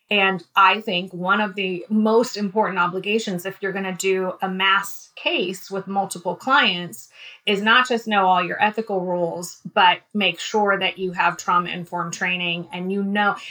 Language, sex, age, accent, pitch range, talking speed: English, female, 30-49, American, 185-225 Hz, 175 wpm